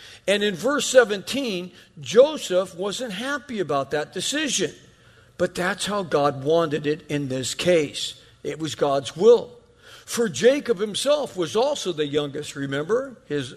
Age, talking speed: 50-69, 140 wpm